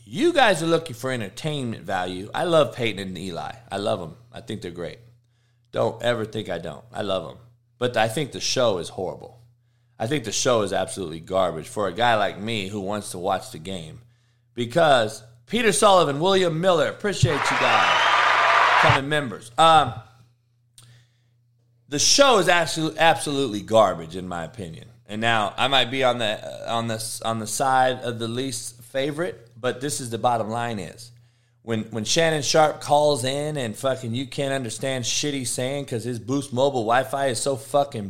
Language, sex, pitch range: English, male, 115-145 Hz